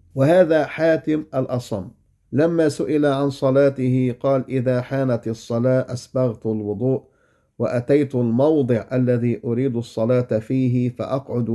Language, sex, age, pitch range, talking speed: English, male, 50-69, 115-140 Hz, 105 wpm